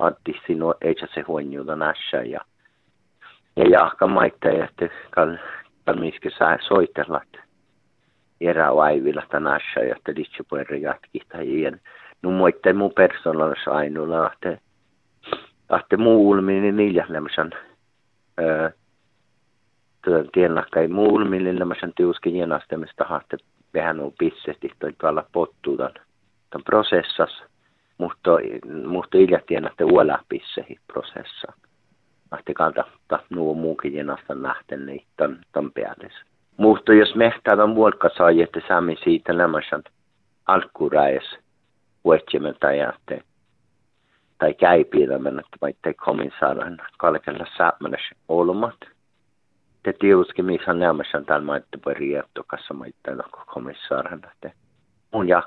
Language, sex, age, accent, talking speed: Finnish, male, 50-69, native, 100 wpm